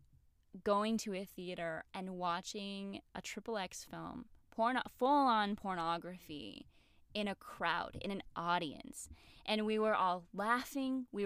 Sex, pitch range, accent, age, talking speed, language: female, 175-215 Hz, American, 10-29, 135 wpm, English